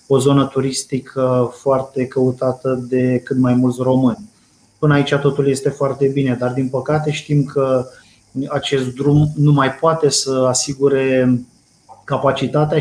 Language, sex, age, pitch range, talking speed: Romanian, male, 20-39, 130-140 Hz, 135 wpm